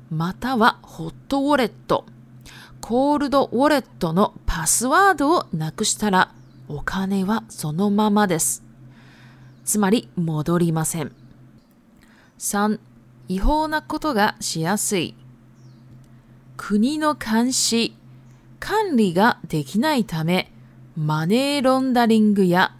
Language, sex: Japanese, female